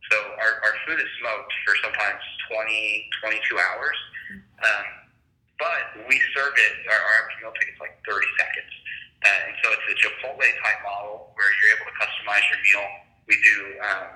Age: 20-39